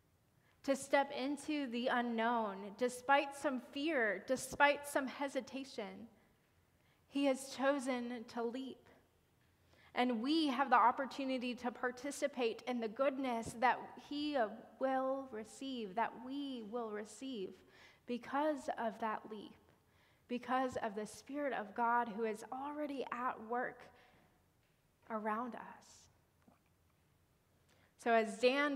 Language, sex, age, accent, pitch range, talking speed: English, female, 20-39, American, 230-270 Hz, 115 wpm